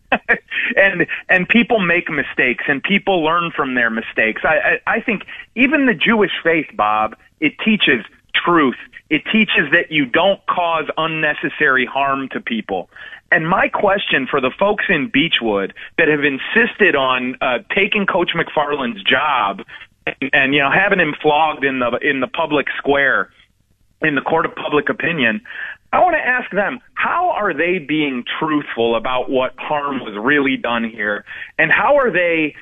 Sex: male